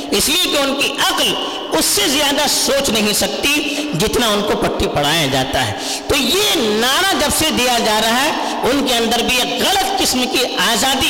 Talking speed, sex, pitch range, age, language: 140 wpm, female, 205-310 Hz, 50-69, Urdu